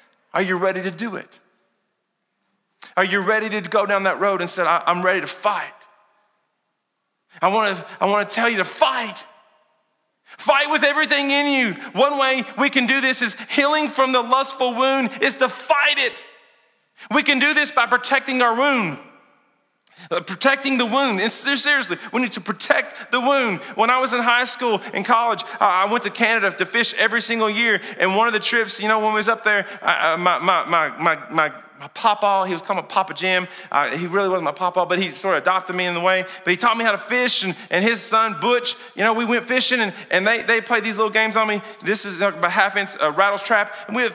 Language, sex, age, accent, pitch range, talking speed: English, male, 40-59, American, 200-260 Hz, 225 wpm